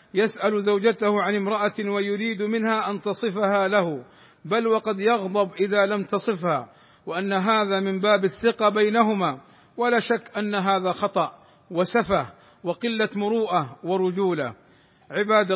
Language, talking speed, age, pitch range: Arabic, 120 wpm, 50-69, 185-210 Hz